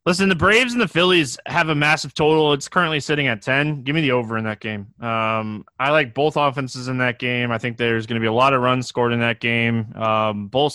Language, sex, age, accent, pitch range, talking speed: English, male, 20-39, American, 120-180 Hz, 255 wpm